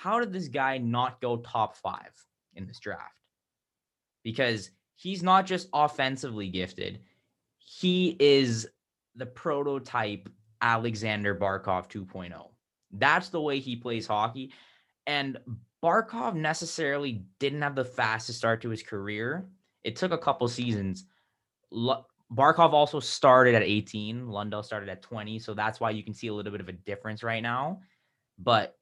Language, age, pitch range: English, 20-39, 105-135 Hz